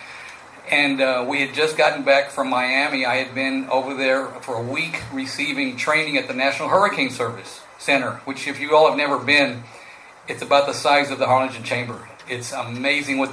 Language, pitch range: English, 120-140 Hz